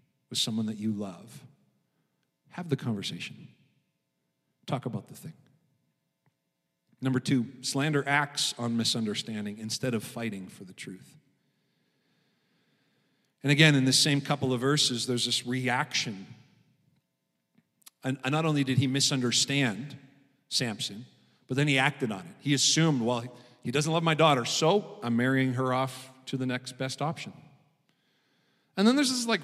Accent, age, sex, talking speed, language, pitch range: American, 50-69, male, 145 wpm, English, 130-175 Hz